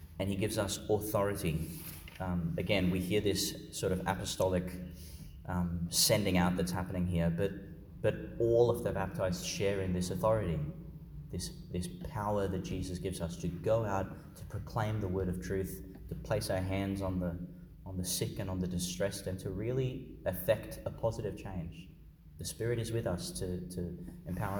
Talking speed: 180 wpm